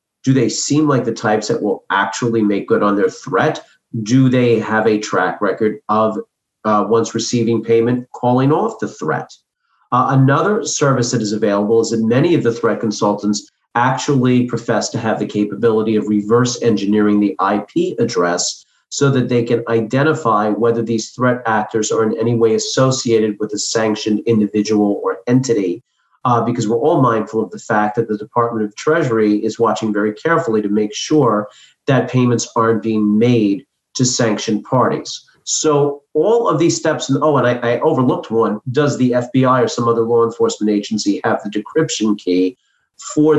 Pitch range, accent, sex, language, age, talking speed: 110-125 Hz, American, male, English, 40-59, 175 wpm